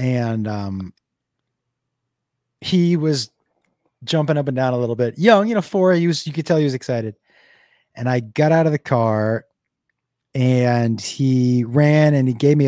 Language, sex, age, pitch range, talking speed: English, male, 30-49, 120-150 Hz, 175 wpm